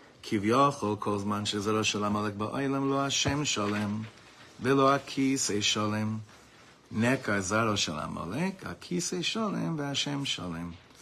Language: English